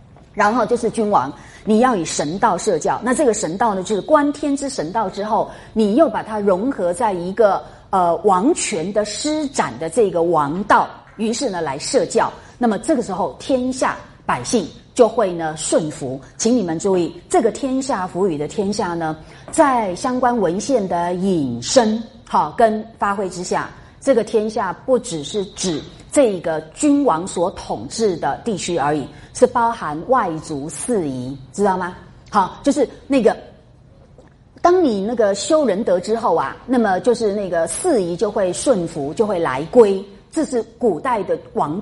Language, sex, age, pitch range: Chinese, female, 30-49, 175-250 Hz